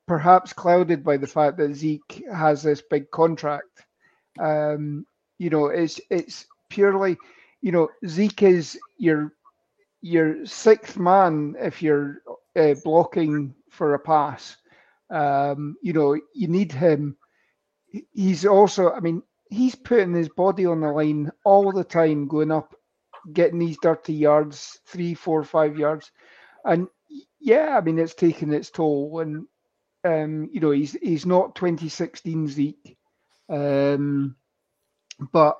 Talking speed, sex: 135 wpm, male